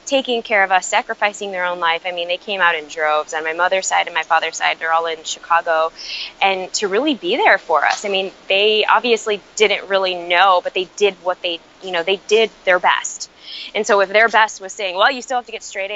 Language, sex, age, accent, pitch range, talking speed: English, female, 20-39, American, 180-220 Hz, 250 wpm